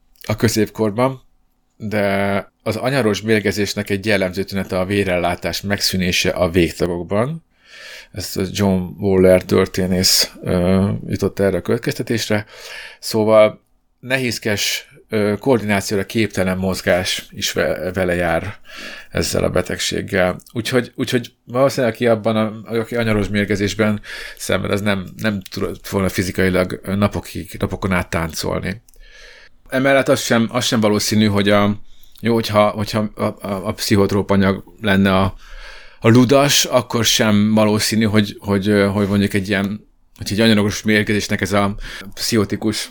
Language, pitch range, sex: Hungarian, 95-110 Hz, male